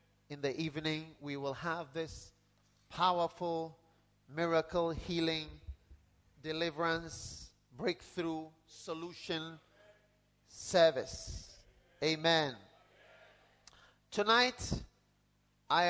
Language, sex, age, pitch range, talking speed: English, male, 40-59, 120-170 Hz, 65 wpm